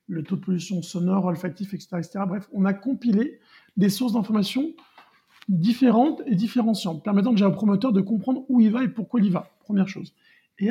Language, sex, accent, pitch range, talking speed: French, male, French, 185-230 Hz, 195 wpm